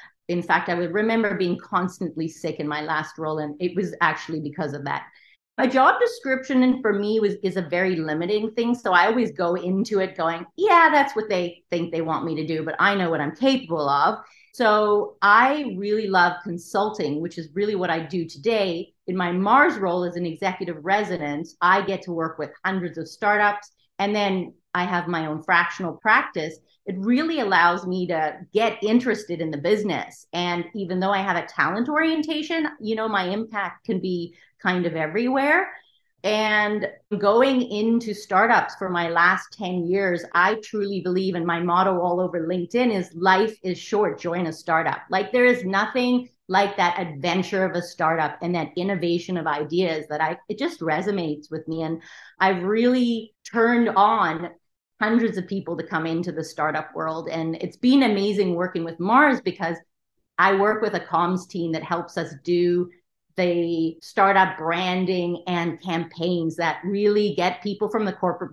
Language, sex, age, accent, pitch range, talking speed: English, female, 40-59, American, 170-210 Hz, 185 wpm